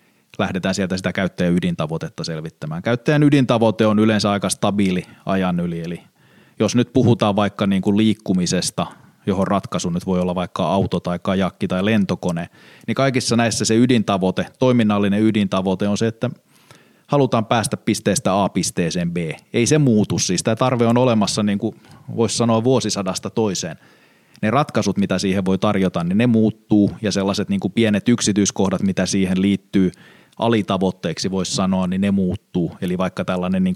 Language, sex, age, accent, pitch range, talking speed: Finnish, male, 20-39, native, 95-110 Hz, 160 wpm